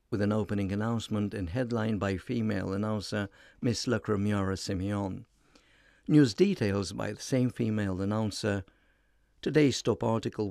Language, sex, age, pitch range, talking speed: English, male, 60-79, 100-120 Hz, 125 wpm